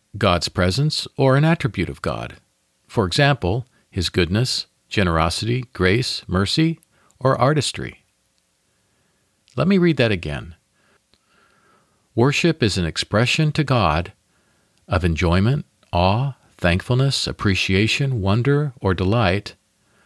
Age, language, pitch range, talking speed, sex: 50-69, English, 90-125 Hz, 105 wpm, male